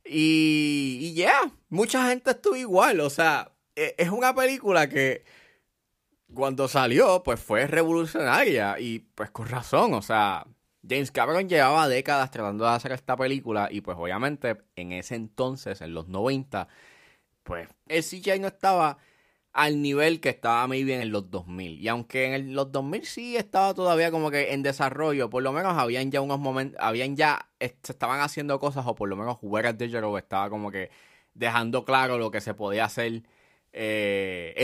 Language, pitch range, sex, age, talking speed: Spanish, 110-160 Hz, male, 20-39, 175 wpm